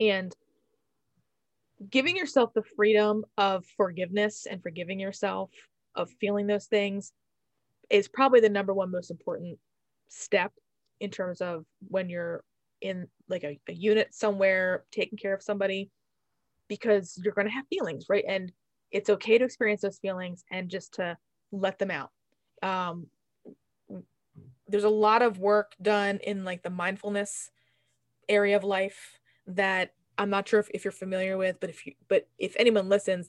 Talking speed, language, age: 155 wpm, English, 20-39